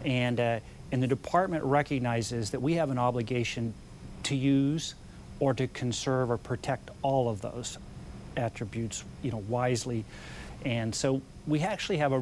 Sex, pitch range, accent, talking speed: male, 115-135 Hz, American, 150 wpm